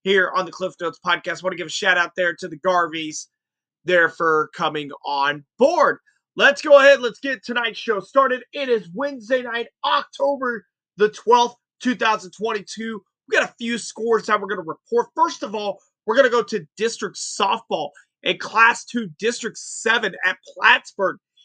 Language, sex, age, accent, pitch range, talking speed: English, male, 30-49, American, 190-235 Hz, 180 wpm